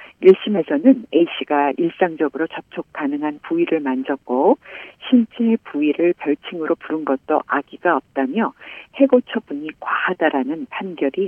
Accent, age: native, 50-69